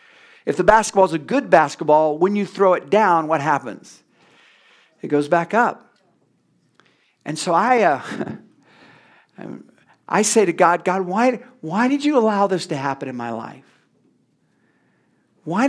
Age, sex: 50-69, male